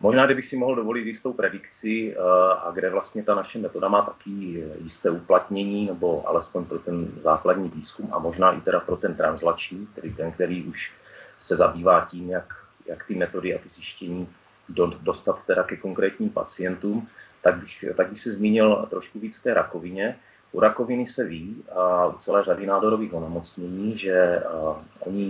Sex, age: male, 30-49